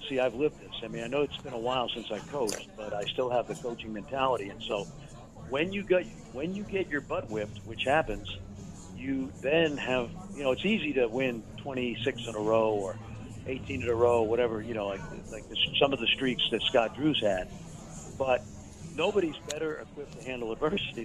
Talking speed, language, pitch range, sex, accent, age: 210 wpm, English, 115-145 Hz, male, American, 50-69